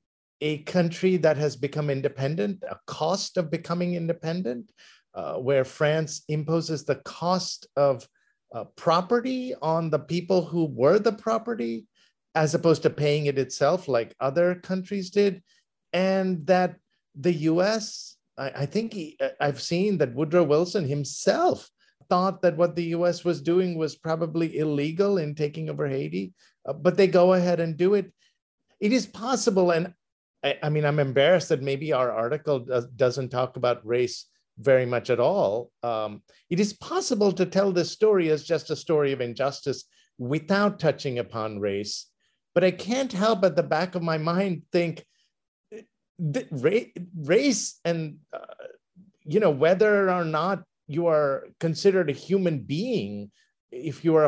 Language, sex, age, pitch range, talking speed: English, male, 50-69, 145-190 Hz, 160 wpm